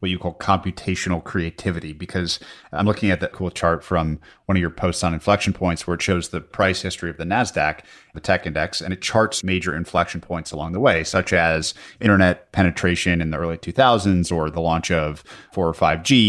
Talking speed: 205 wpm